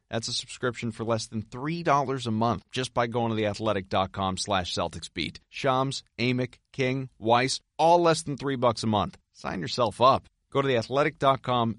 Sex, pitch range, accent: male, 95-120 Hz, American